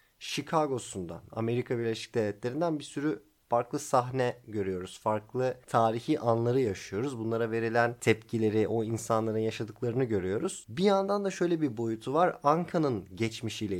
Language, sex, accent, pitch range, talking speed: Turkish, male, native, 110-150 Hz, 125 wpm